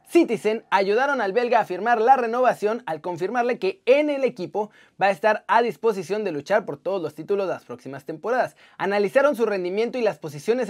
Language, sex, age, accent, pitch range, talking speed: Spanish, male, 30-49, Mexican, 195-265 Hz, 195 wpm